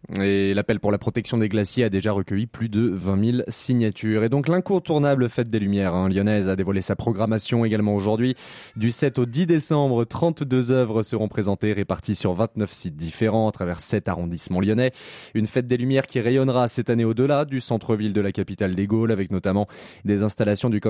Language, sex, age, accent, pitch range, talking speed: French, male, 20-39, French, 100-130 Hz, 190 wpm